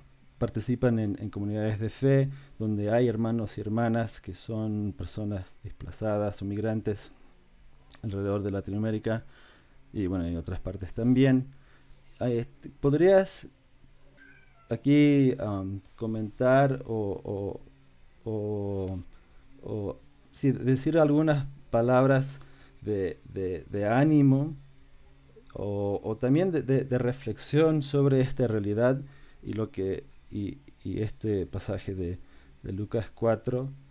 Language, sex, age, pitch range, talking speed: Spanish, male, 30-49, 100-130 Hz, 105 wpm